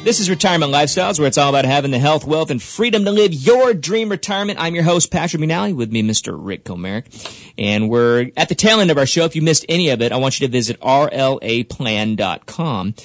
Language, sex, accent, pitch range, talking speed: English, male, American, 110-145 Hz, 230 wpm